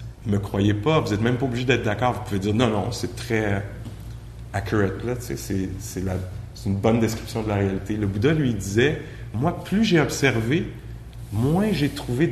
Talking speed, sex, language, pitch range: 200 wpm, male, English, 105-125 Hz